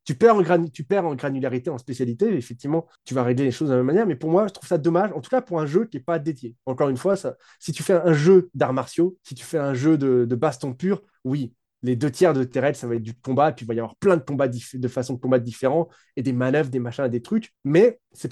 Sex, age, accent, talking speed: male, 20-39, French, 285 wpm